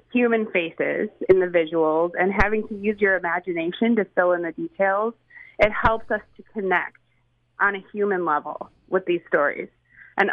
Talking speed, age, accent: 170 wpm, 30-49, American